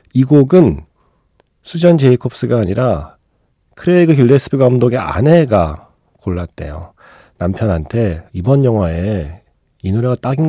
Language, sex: Korean, male